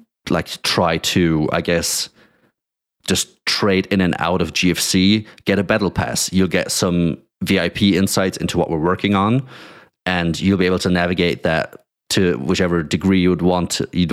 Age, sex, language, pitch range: 30-49, male, English, 85-100 Hz